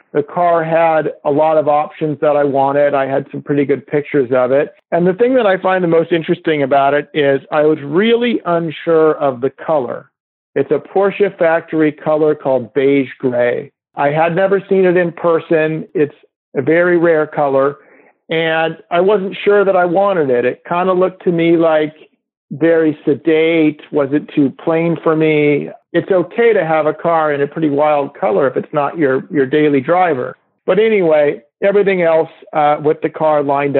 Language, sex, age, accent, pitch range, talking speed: English, male, 50-69, American, 140-165 Hz, 190 wpm